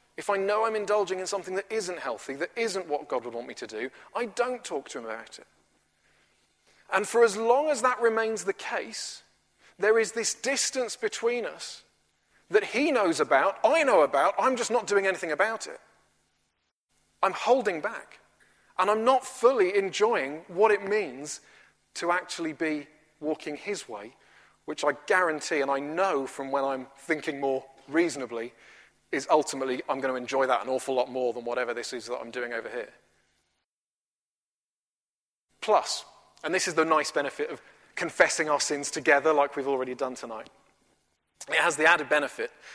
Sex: male